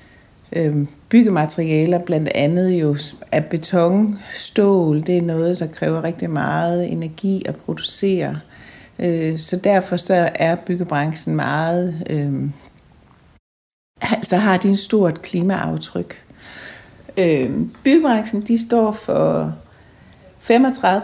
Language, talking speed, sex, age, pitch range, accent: Danish, 100 wpm, female, 60-79, 155-205 Hz, native